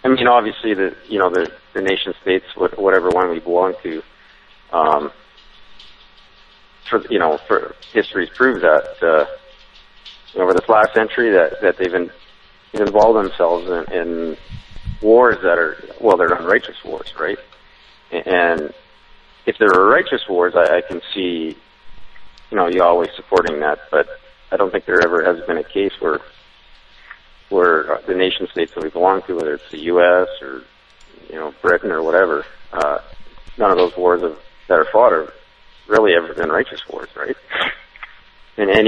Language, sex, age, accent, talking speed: English, male, 40-59, American, 170 wpm